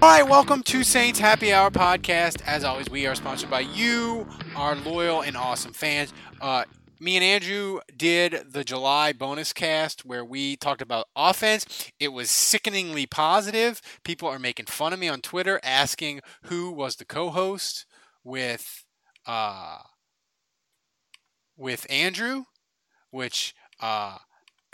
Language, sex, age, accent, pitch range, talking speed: English, male, 20-39, American, 130-190 Hz, 135 wpm